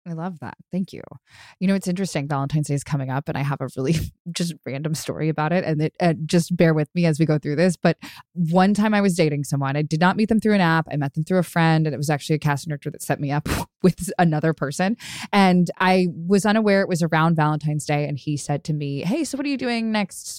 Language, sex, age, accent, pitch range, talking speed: English, female, 20-39, American, 155-205 Hz, 270 wpm